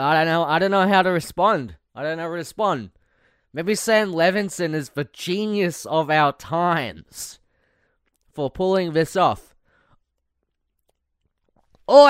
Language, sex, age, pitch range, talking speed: English, male, 30-49, 120-175 Hz, 145 wpm